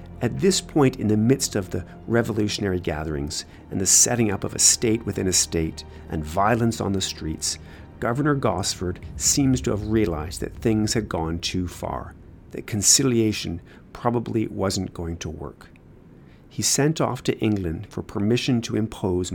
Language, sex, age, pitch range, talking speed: English, male, 50-69, 90-125 Hz, 165 wpm